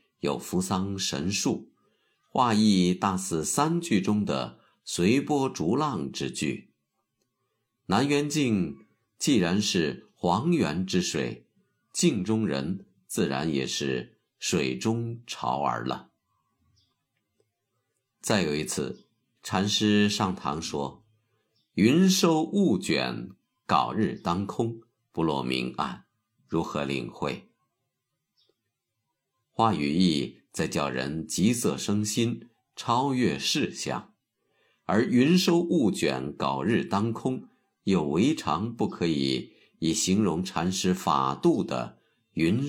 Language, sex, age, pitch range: Chinese, male, 50-69, 85-120 Hz